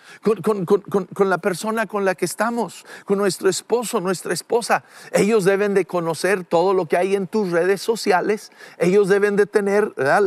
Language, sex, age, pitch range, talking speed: English, male, 50-69, 195-235 Hz, 185 wpm